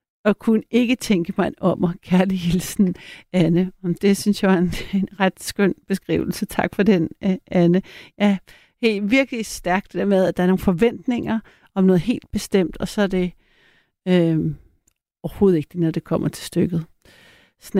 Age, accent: 60-79, native